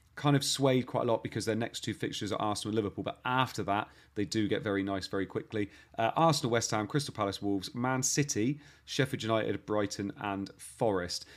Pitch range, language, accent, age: 100-130 Hz, English, British, 30-49